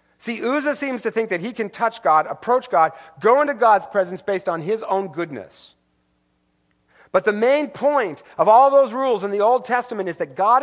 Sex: male